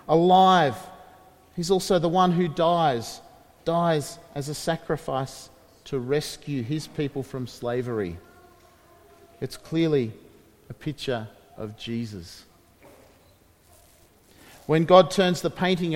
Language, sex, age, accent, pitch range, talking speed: English, male, 40-59, Australian, 140-190 Hz, 105 wpm